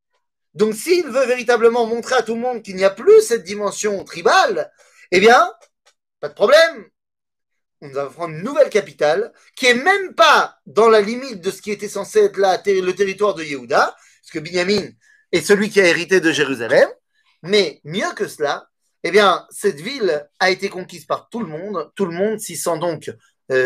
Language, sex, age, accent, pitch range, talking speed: French, male, 30-49, French, 175-270 Hz, 200 wpm